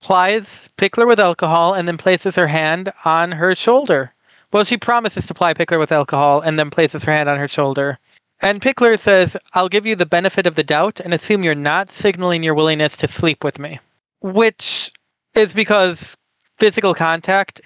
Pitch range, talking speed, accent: 160-200 Hz, 185 wpm, American